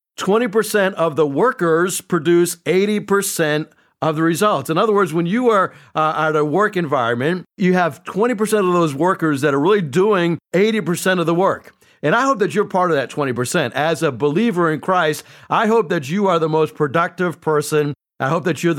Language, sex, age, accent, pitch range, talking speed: English, male, 50-69, American, 160-200 Hz, 195 wpm